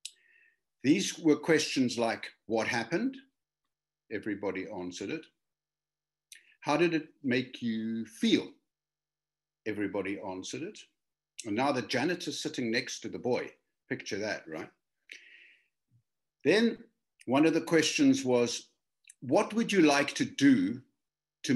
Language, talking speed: English, 120 wpm